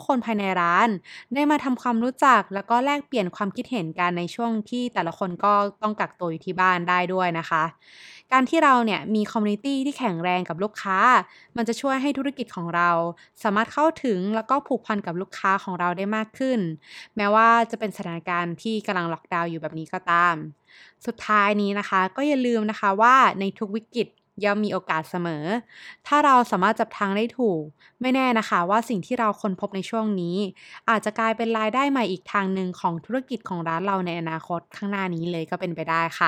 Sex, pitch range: female, 180-235 Hz